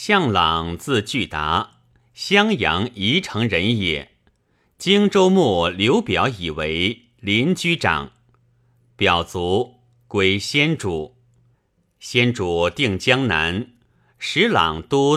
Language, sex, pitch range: Chinese, male, 95-125 Hz